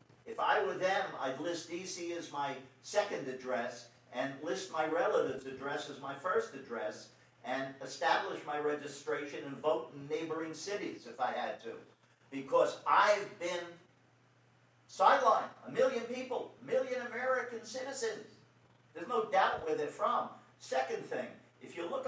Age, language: 50-69, English